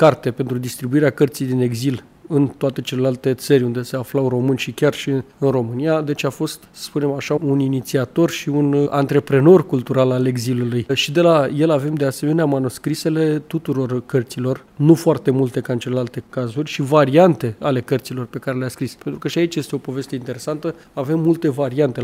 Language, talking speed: English, 190 wpm